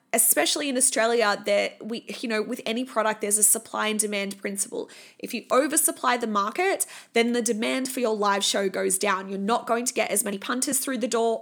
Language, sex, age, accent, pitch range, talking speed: English, female, 20-39, Australian, 205-245 Hz, 215 wpm